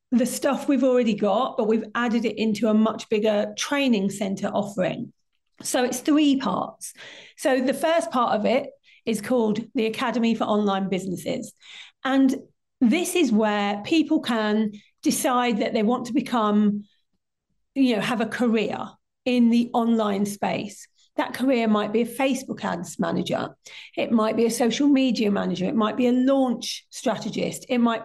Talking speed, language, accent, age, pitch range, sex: 165 wpm, English, British, 40-59, 215-255 Hz, female